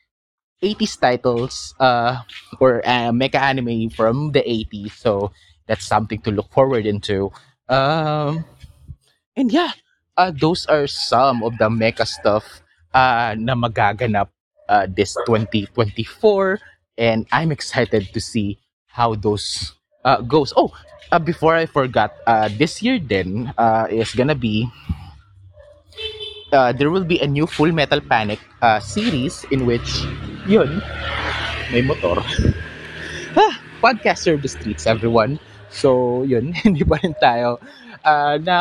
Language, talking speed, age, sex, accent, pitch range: Filipino, 130 wpm, 20-39, male, native, 105-155 Hz